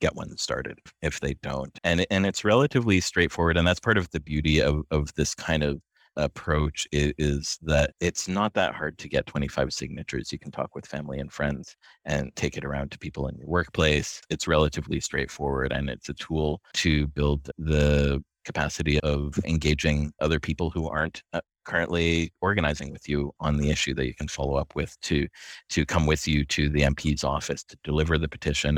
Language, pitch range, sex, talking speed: English, 70-80 Hz, male, 195 wpm